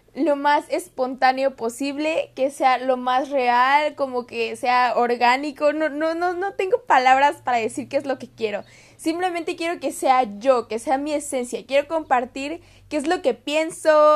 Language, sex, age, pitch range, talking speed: Spanish, female, 20-39, 250-310 Hz, 180 wpm